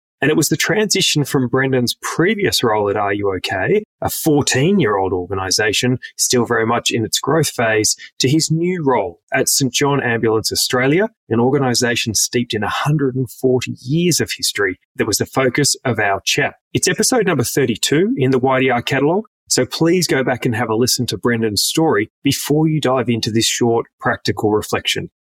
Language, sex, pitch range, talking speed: English, male, 120-155 Hz, 170 wpm